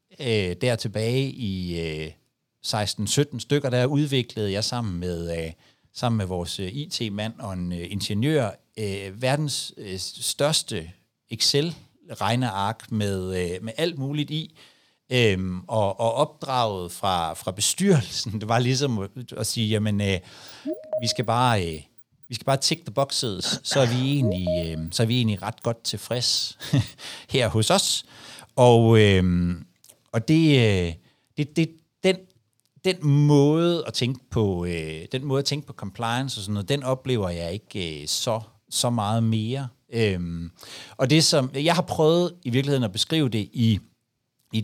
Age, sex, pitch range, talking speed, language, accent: 60-79, male, 100-140 Hz, 150 wpm, Danish, native